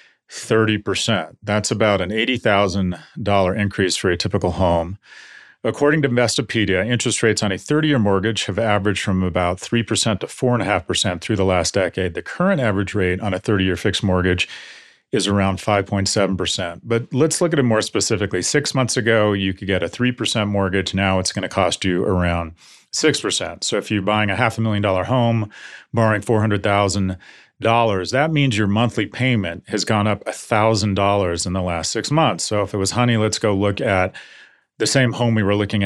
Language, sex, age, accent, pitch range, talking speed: English, male, 40-59, American, 95-115 Hz, 180 wpm